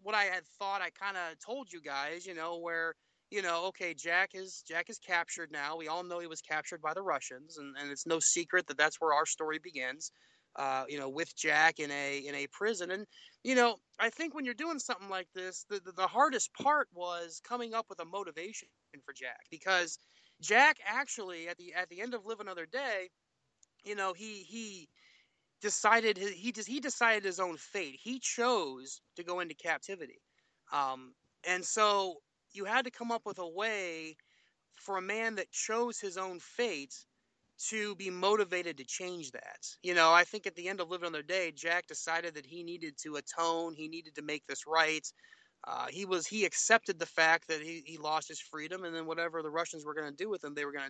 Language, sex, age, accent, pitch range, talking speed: English, male, 30-49, American, 160-210 Hz, 215 wpm